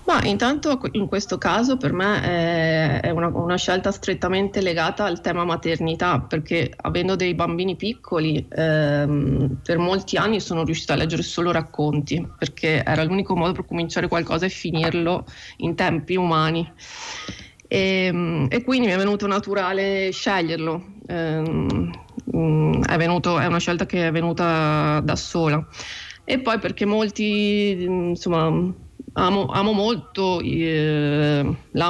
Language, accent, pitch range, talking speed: Italian, native, 160-195 Hz, 130 wpm